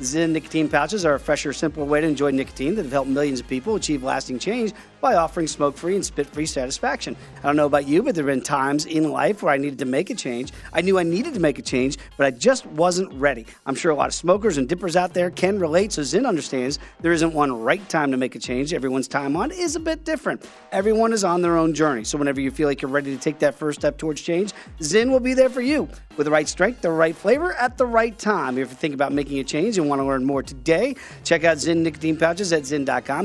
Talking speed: 265 wpm